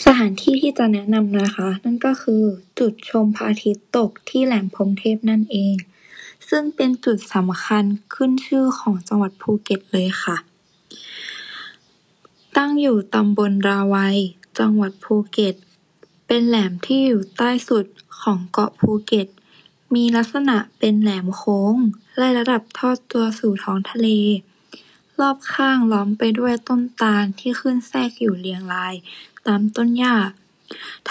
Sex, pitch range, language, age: female, 200-245 Hz, Thai, 20-39